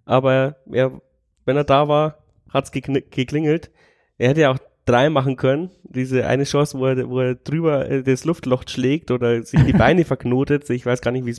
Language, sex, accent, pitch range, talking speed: German, male, German, 115-135 Hz, 200 wpm